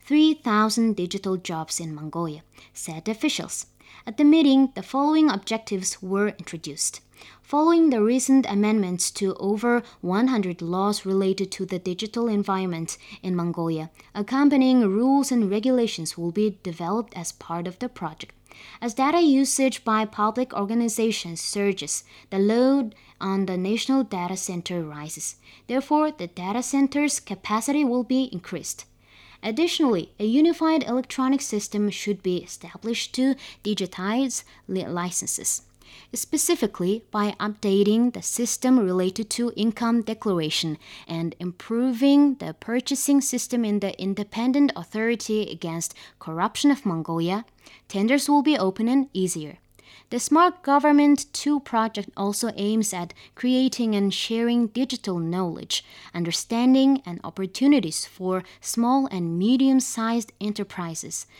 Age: 20-39